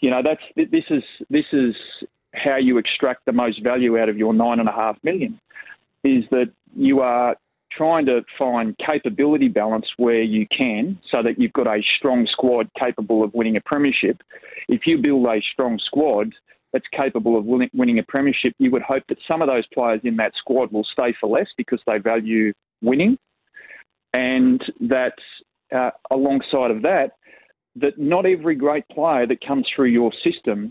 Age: 30-49